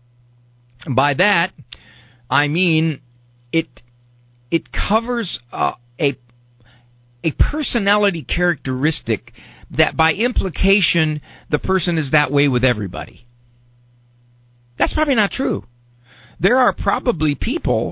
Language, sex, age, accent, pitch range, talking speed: English, male, 50-69, American, 120-165 Hz, 100 wpm